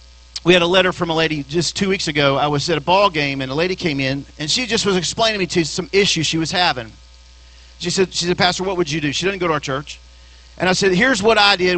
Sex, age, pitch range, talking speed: male, 40-59, 140-195 Hz, 285 wpm